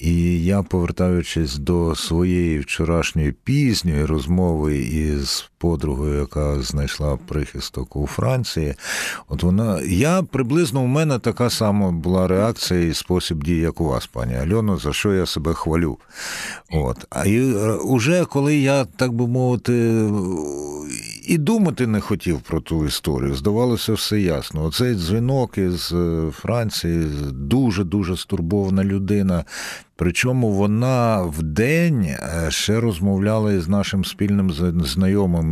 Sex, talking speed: male, 125 wpm